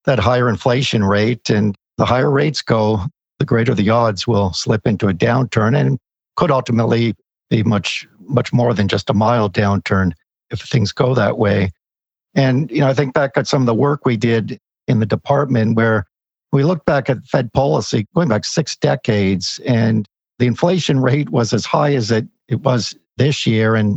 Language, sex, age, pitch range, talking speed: English, male, 50-69, 105-140 Hz, 190 wpm